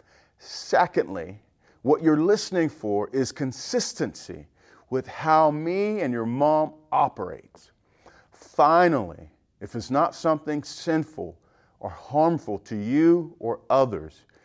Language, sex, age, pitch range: English, male, 40-59, 95-140 Hz